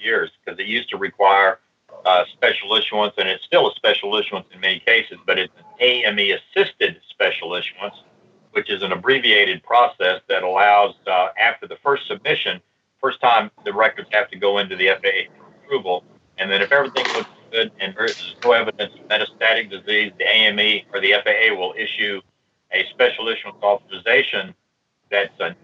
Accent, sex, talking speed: American, male, 170 wpm